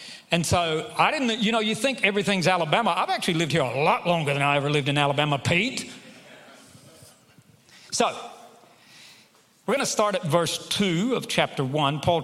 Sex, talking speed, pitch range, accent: male, 175 wpm, 145-205 Hz, American